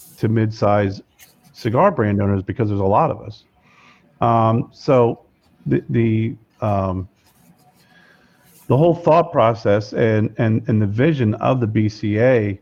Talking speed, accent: 135 wpm, American